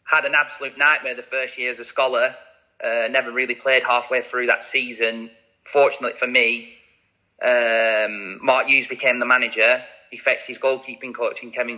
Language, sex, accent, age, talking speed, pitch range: English, male, British, 20-39, 175 wpm, 115-140 Hz